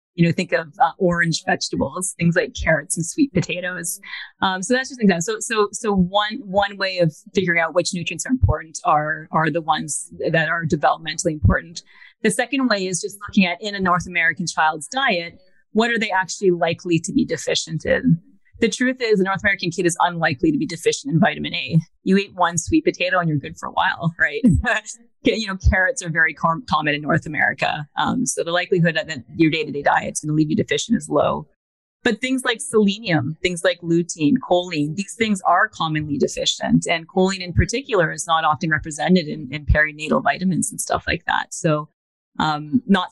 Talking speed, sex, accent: 205 wpm, female, American